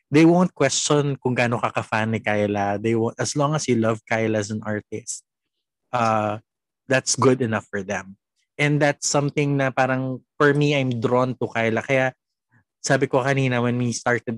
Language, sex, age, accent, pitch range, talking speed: Filipino, male, 20-39, native, 110-135 Hz, 175 wpm